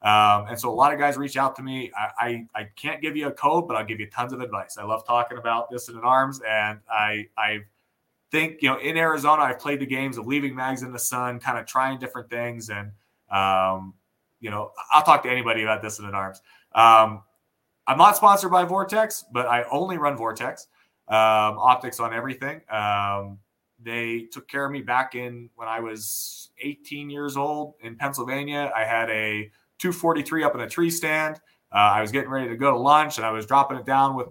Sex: male